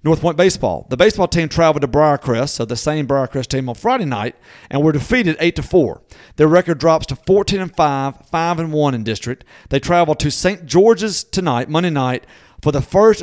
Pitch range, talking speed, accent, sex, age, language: 125-165 Hz, 195 wpm, American, male, 40-59, English